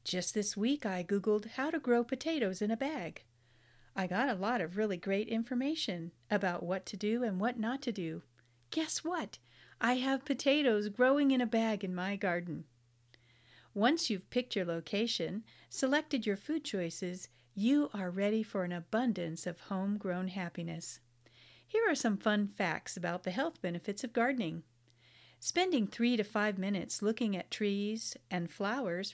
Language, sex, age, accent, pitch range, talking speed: English, female, 50-69, American, 175-235 Hz, 165 wpm